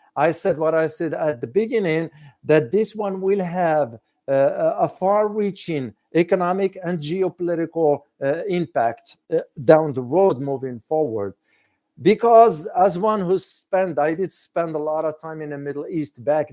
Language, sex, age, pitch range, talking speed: English, male, 50-69, 145-170 Hz, 160 wpm